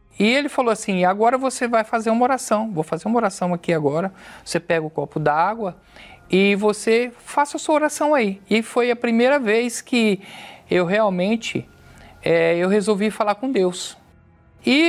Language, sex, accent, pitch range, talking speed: Portuguese, male, Brazilian, 165-230 Hz, 170 wpm